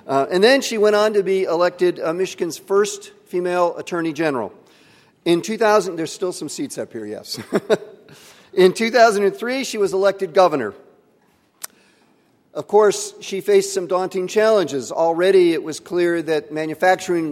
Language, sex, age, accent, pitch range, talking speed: English, male, 50-69, American, 140-190 Hz, 150 wpm